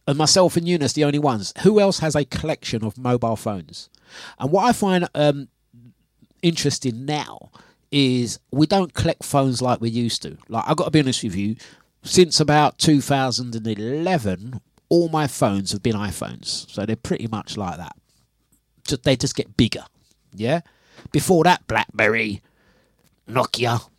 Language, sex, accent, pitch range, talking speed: English, male, British, 120-165 Hz, 160 wpm